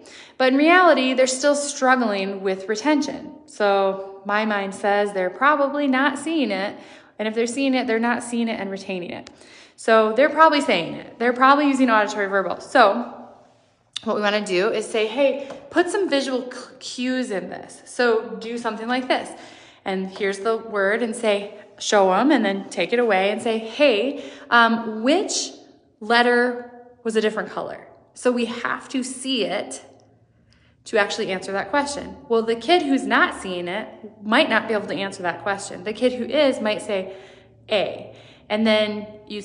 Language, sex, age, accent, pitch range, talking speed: English, female, 20-39, American, 200-260 Hz, 180 wpm